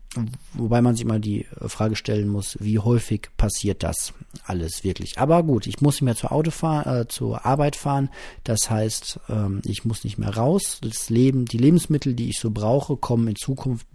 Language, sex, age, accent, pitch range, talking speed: German, male, 40-59, German, 105-125 Hz, 200 wpm